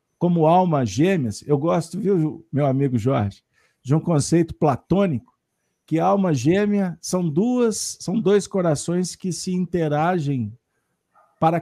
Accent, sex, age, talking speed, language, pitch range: Brazilian, male, 50-69, 130 wpm, Portuguese, 140-190 Hz